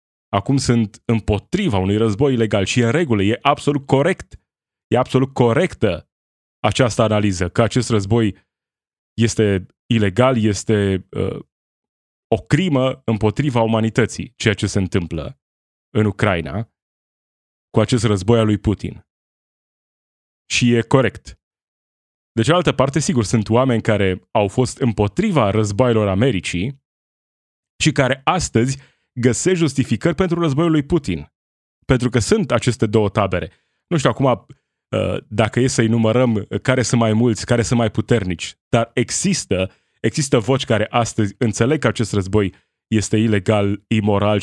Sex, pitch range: male, 100-125 Hz